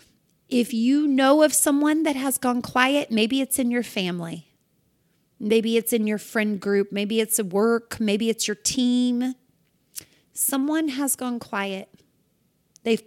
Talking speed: 150 wpm